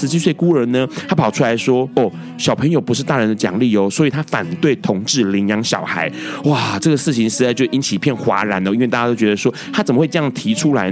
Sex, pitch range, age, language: male, 105-150 Hz, 30-49, Chinese